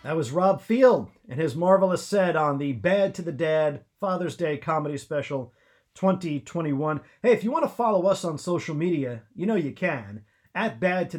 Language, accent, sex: English, American, male